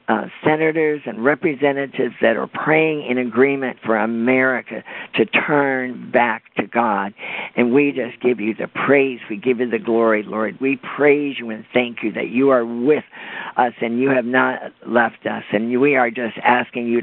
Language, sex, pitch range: English, male, 120-145 Hz